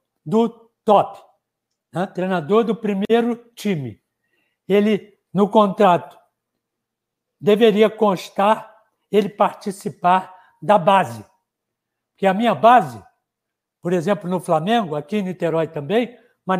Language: Portuguese